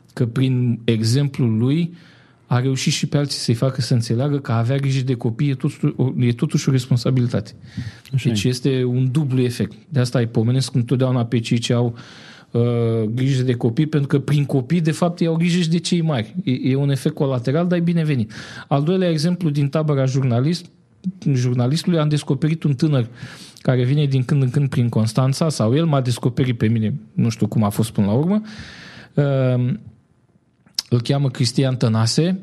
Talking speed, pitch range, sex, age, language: 185 wpm, 125-160 Hz, male, 40-59, Romanian